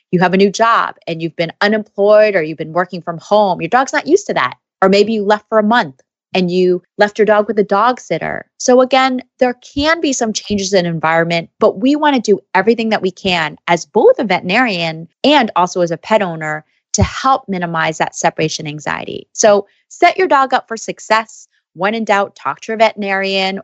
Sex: female